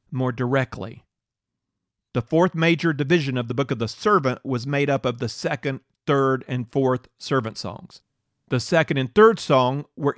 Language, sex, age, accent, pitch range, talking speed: English, male, 40-59, American, 125-145 Hz, 170 wpm